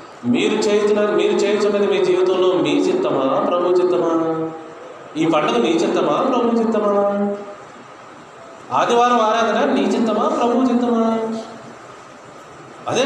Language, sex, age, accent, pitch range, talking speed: Telugu, male, 30-49, native, 170-250 Hz, 105 wpm